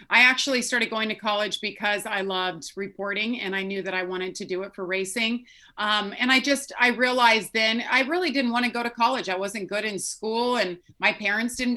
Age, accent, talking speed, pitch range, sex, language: 30-49, American, 230 wpm, 195-255 Hz, female, English